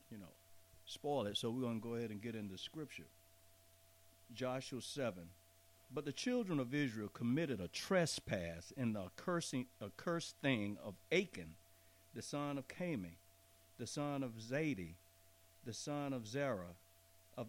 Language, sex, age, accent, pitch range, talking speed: English, male, 60-79, American, 100-145 Hz, 150 wpm